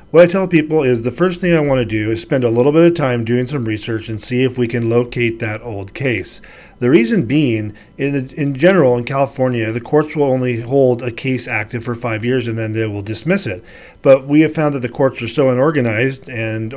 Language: English